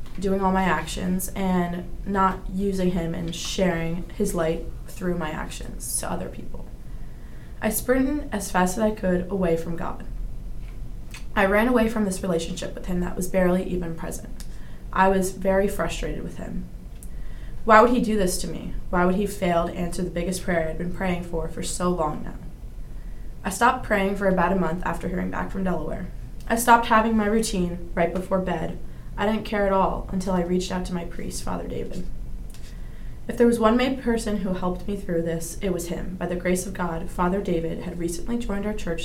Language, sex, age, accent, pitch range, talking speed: English, female, 20-39, American, 170-205 Hz, 205 wpm